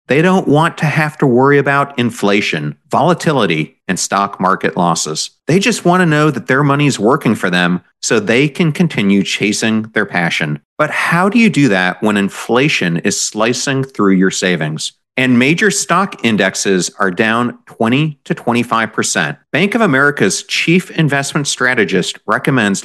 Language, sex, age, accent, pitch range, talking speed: English, male, 40-59, American, 105-155 Hz, 165 wpm